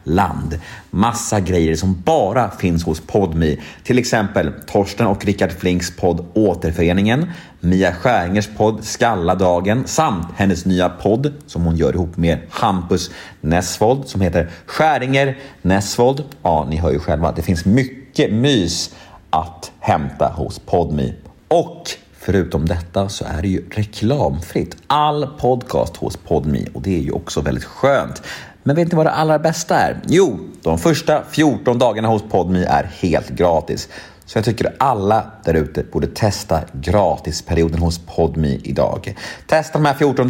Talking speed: 155 wpm